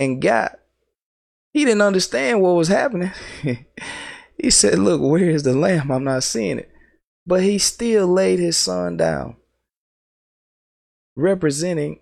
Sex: male